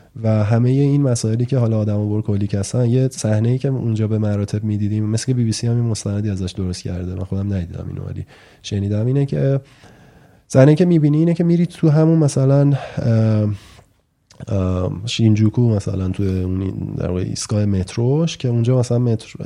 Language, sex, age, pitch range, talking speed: Persian, male, 20-39, 100-130 Hz, 175 wpm